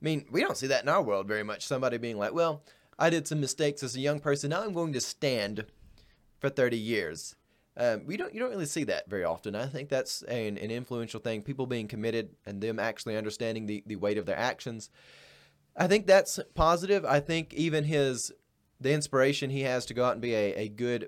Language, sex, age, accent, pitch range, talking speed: English, male, 20-39, American, 115-155 Hz, 230 wpm